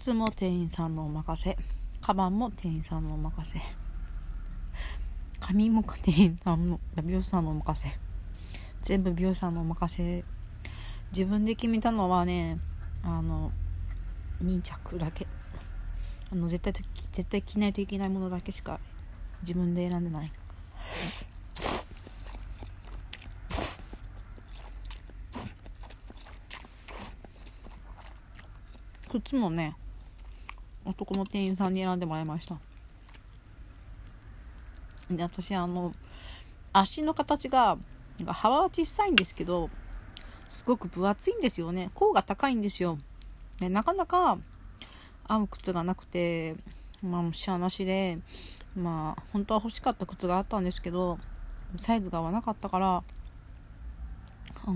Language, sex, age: Japanese, female, 40-59